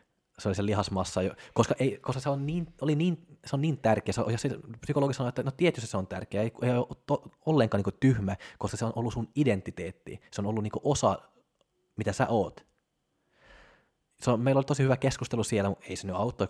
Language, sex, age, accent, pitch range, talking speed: Finnish, male, 20-39, native, 100-125 Hz, 205 wpm